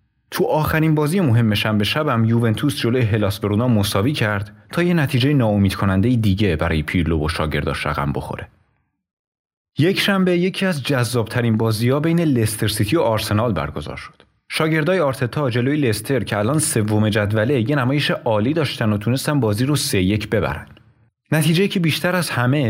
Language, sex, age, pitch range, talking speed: Persian, male, 30-49, 105-150 Hz, 160 wpm